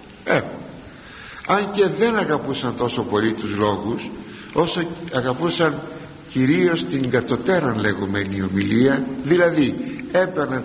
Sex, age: male, 60-79